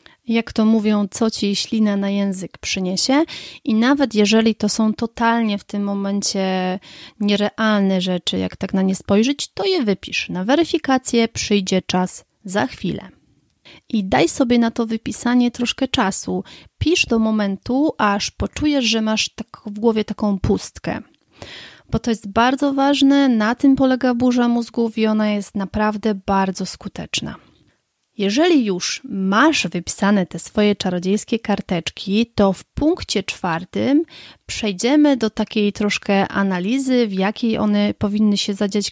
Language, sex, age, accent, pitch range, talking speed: Polish, female, 30-49, native, 200-245 Hz, 140 wpm